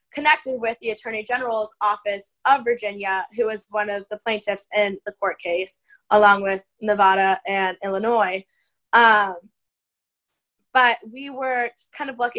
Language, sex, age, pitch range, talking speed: English, female, 10-29, 205-250 Hz, 145 wpm